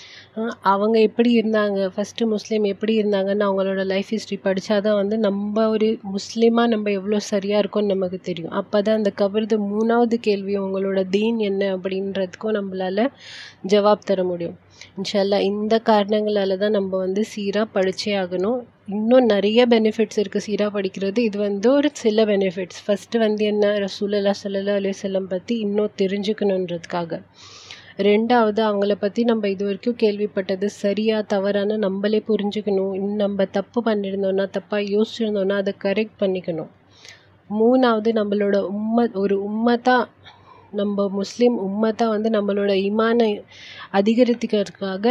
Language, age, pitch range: Tamil, 30-49, 195-220 Hz